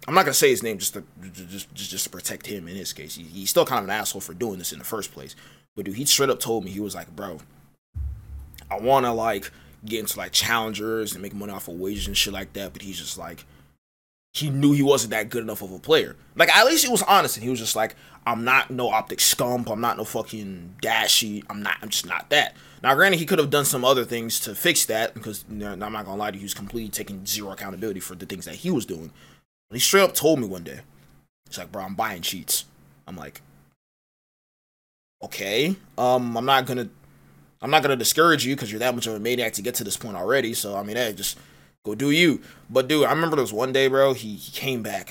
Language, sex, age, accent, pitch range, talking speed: English, male, 20-39, American, 100-135 Hz, 260 wpm